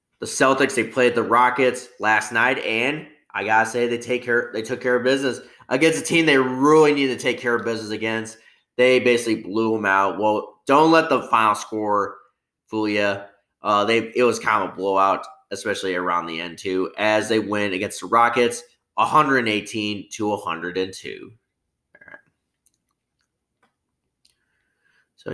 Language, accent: English, American